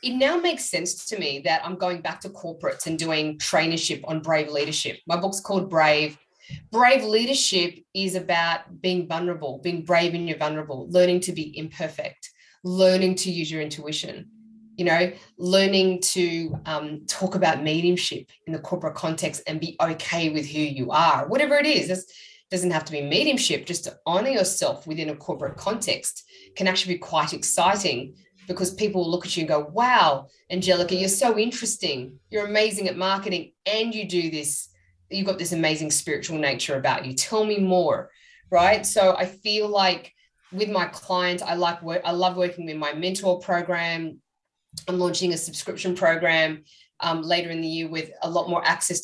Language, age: English, 20-39